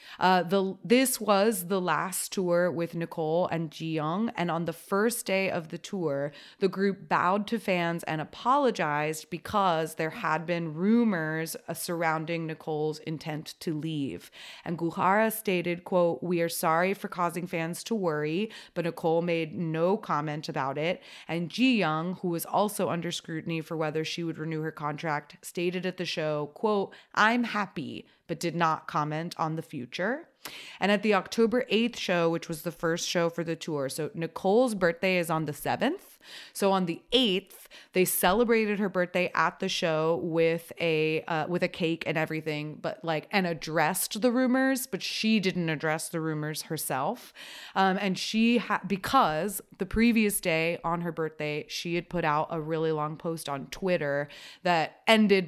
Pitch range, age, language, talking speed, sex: 160-190 Hz, 30-49, English, 175 wpm, female